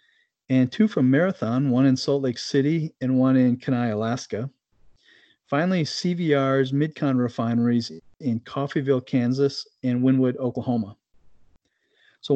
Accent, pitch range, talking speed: American, 125-145 Hz, 120 wpm